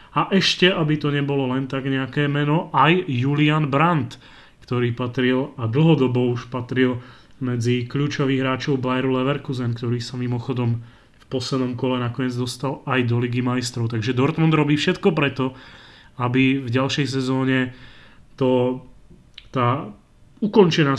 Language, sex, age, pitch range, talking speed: Slovak, male, 30-49, 125-140 Hz, 135 wpm